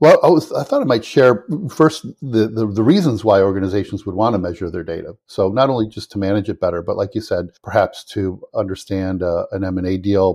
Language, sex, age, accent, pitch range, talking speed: German, male, 50-69, American, 95-105 Hz, 230 wpm